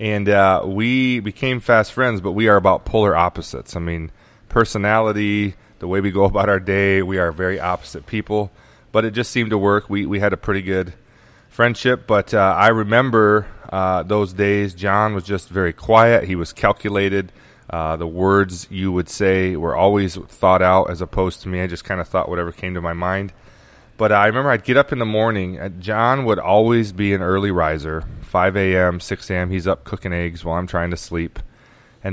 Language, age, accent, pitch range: English, 30-49, American, 90-110 Hz